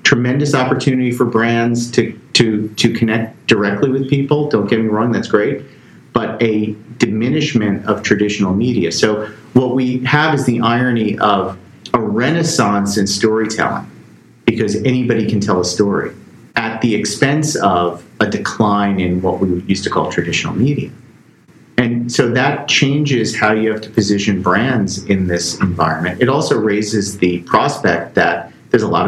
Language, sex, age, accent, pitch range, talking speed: English, male, 40-59, American, 100-125 Hz, 160 wpm